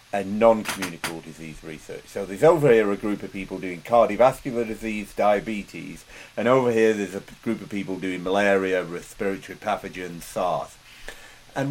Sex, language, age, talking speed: male, English, 40-59, 155 wpm